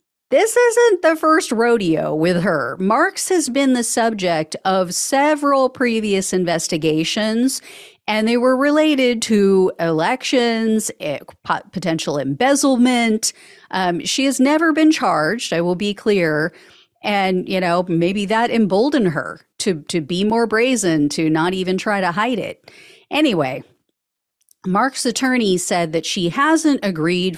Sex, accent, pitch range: female, American, 165-245 Hz